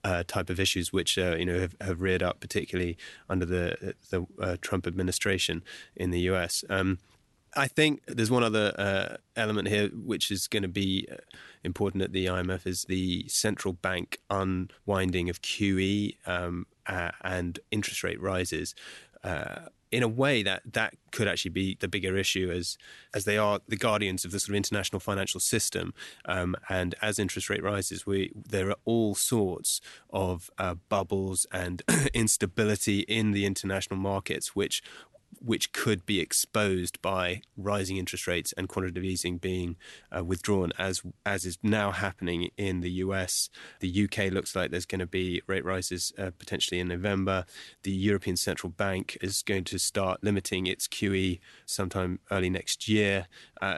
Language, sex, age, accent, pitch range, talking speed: English, male, 20-39, British, 90-100 Hz, 170 wpm